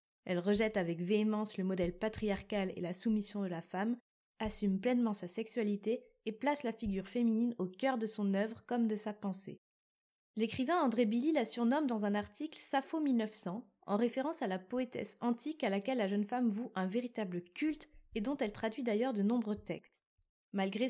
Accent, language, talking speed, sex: French, French, 185 wpm, female